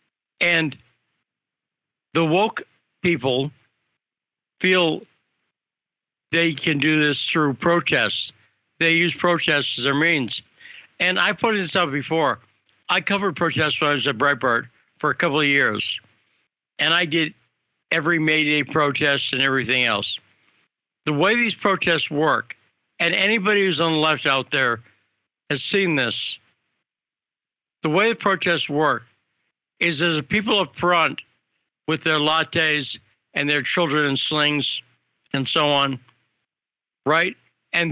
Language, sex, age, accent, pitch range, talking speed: English, male, 60-79, American, 135-170 Hz, 135 wpm